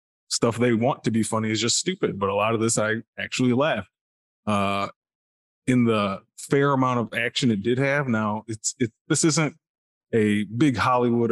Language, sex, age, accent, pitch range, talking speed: English, male, 20-39, American, 105-120 Hz, 180 wpm